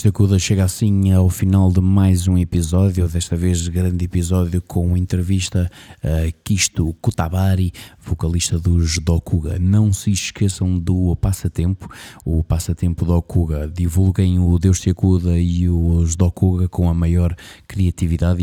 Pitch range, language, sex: 85-95 Hz, Portuguese, male